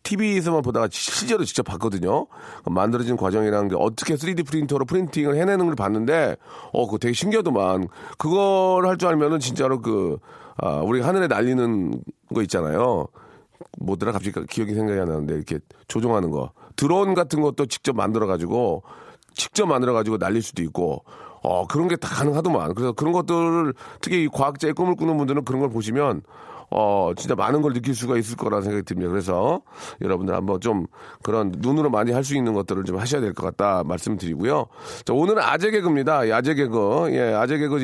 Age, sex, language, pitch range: 40-59, male, Korean, 110-155 Hz